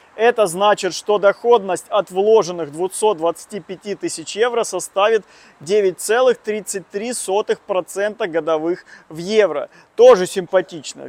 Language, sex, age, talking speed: Russian, male, 20-39, 85 wpm